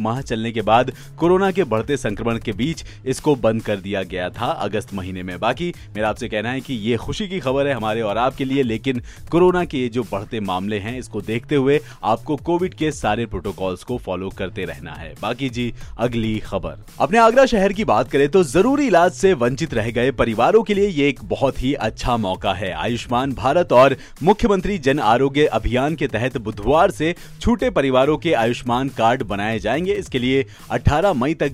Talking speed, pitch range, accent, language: 200 wpm, 115-160 Hz, native, Hindi